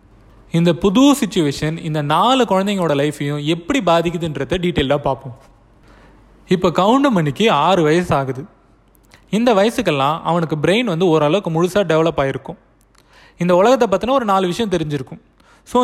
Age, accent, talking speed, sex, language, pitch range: 20-39, native, 125 wpm, male, Tamil, 145-195 Hz